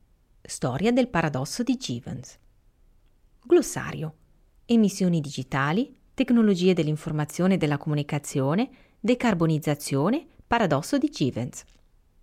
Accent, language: native, Italian